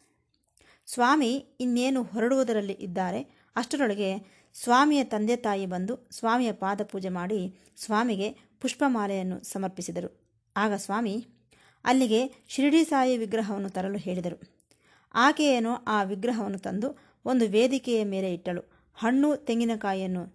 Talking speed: 95 wpm